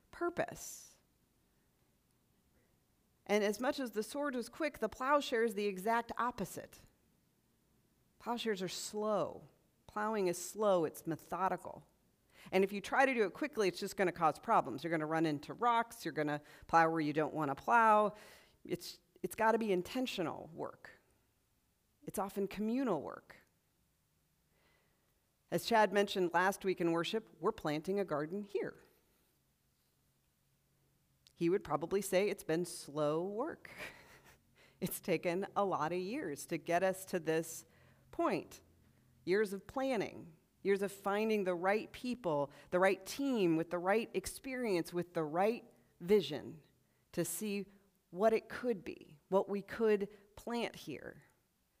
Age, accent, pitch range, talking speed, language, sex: 40-59, American, 170-215 Hz, 145 wpm, English, female